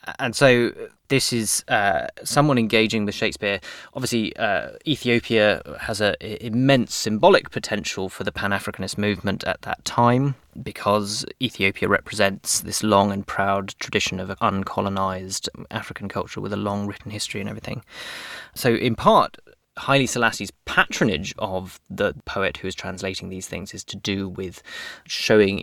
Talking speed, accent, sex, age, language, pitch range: 145 wpm, British, male, 20-39, English, 95-115 Hz